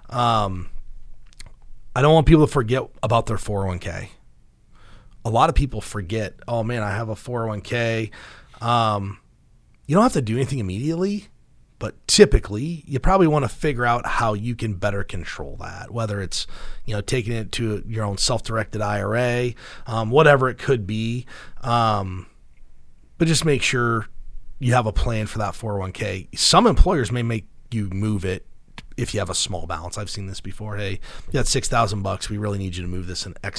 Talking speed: 180 wpm